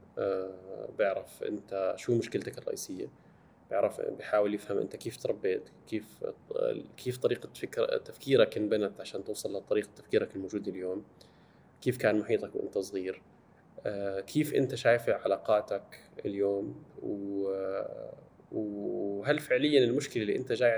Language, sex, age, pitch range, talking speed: Arabic, male, 20-39, 100-125 Hz, 115 wpm